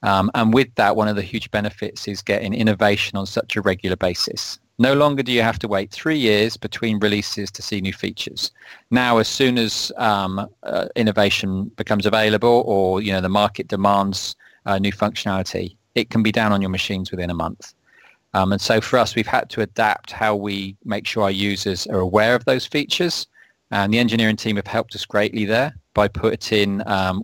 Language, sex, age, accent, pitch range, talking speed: English, male, 30-49, British, 95-110 Hz, 205 wpm